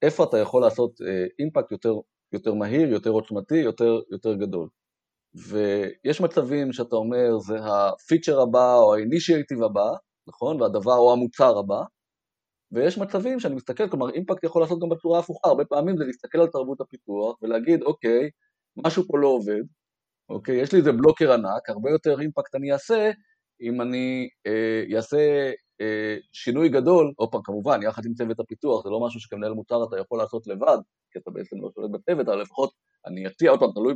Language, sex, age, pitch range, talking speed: Hebrew, male, 30-49, 110-160 Hz, 175 wpm